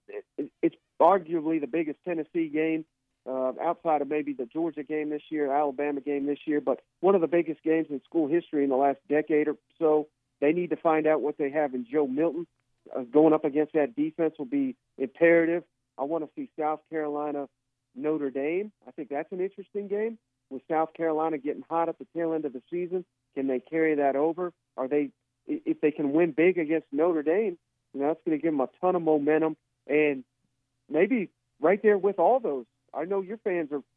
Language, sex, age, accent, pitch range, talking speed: English, male, 40-59, American, 140-180 Hz, 210 wpm